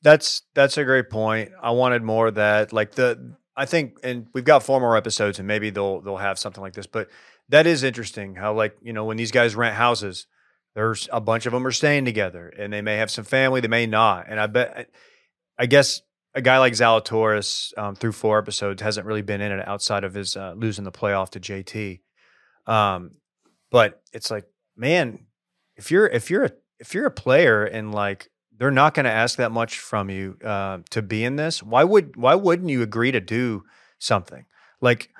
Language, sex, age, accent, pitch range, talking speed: English, male, 30-49, American, 105-135 Hz, 215 wpm